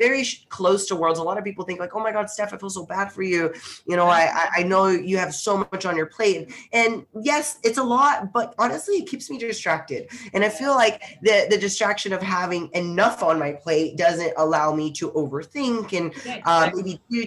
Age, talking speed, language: 20-39, 225 wpm, English